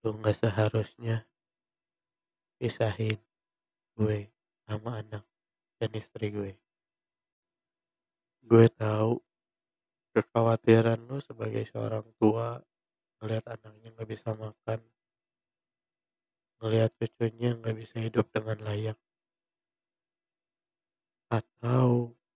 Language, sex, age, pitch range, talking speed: Indonesian, male, 20-39, 105-115 Hz, 80 wpm